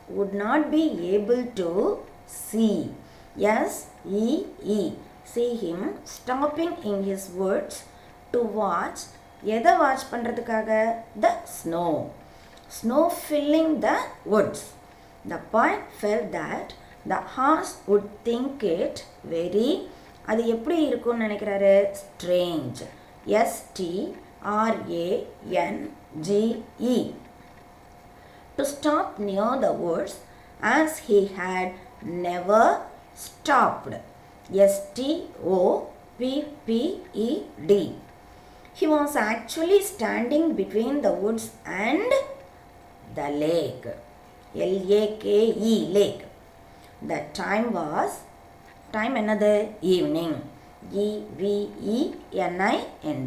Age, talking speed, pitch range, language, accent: 20-39, 90 wpm, 195-275 Hz, Tamil, native